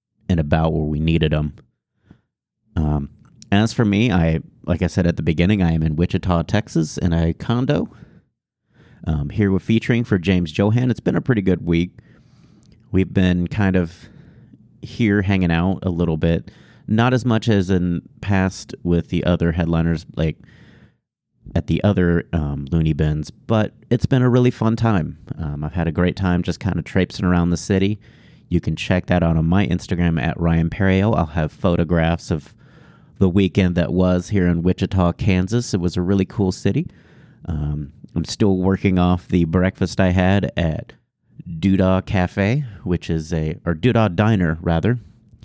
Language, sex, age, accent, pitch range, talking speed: English, male, 30-49, American, 85-100 Hz, 175 wpm